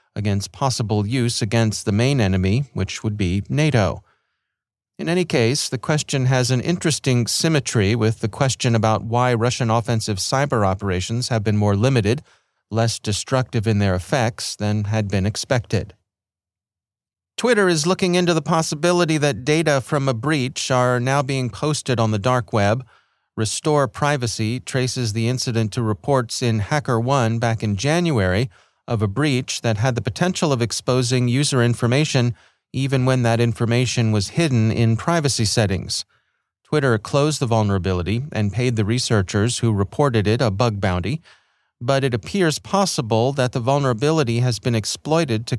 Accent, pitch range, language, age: American, 110-135 Hz, English, 40-59